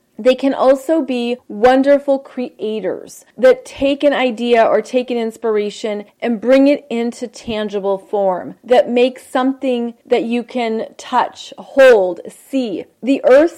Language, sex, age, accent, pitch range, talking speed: English, female, 30-49, American, 225-275 Hz, 135 wpm